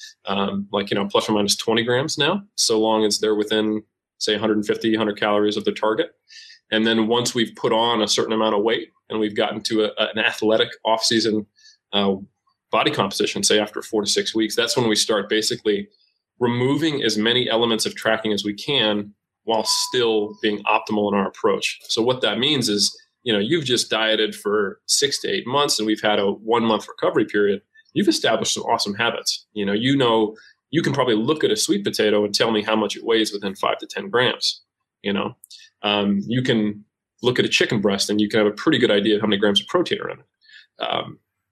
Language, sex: English, male